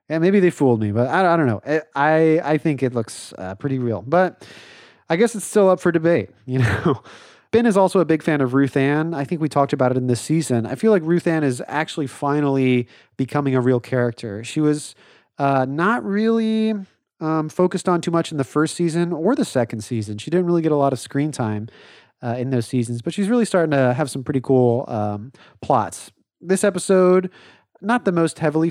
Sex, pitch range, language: male, 130-180 Hz, English